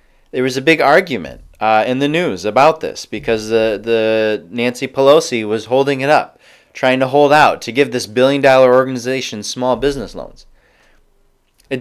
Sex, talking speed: male, 175 wpm